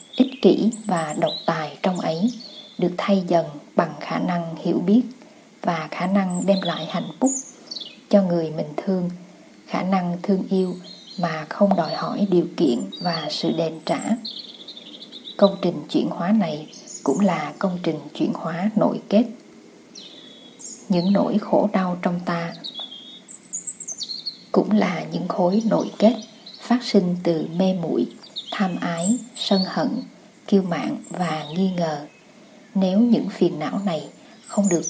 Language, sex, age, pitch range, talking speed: Vietnamese, female, 20-39, 175-225 Hz, 150 wpm